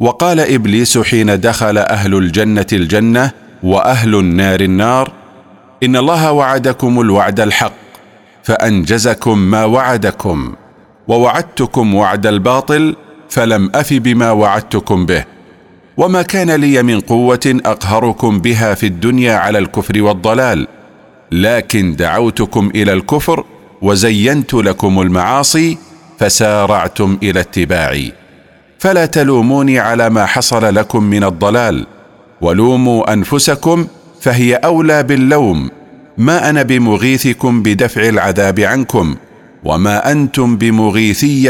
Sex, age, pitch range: male, 50-69, 100-130 Hz